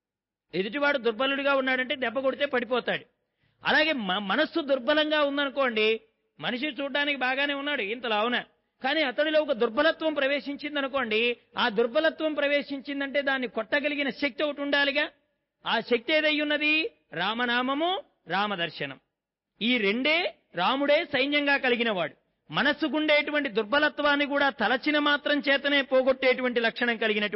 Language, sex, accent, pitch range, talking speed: English, male, Indian, 235-285 Hz, 50 wpm